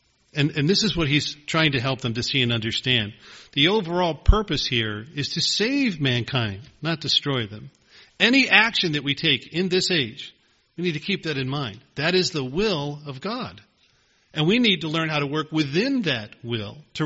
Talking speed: 205 wpm